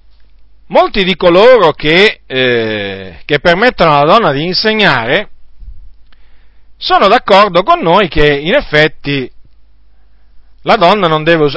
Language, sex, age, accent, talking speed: Italian, male, 50-69, native, 115 wpm